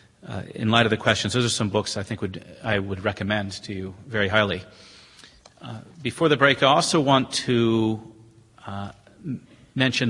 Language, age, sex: English, 40-59, male